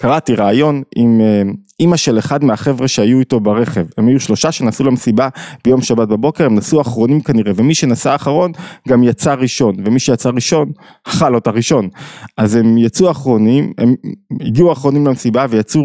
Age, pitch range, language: 20-39, 115-150 Hz, Hebrew